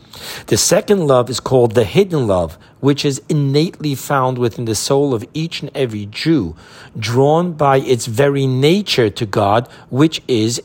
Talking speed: 165 wpm